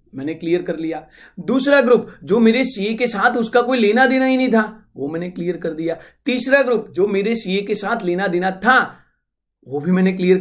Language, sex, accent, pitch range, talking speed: Hindi, male, native, 180-245 Hz, 215 wpm